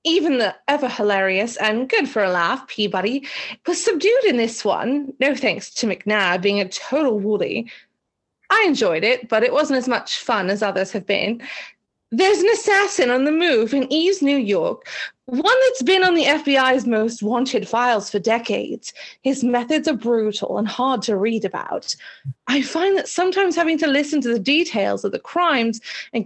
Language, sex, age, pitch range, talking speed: English, female, 30-49, 220-310 Hz, 175 wpm